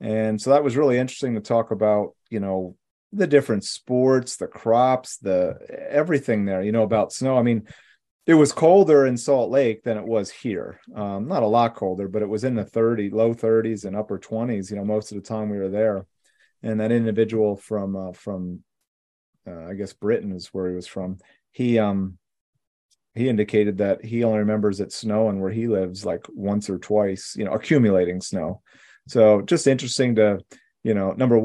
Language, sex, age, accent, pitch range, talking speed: English, male, 30-49, American, 100-125 Hz, 195 wpm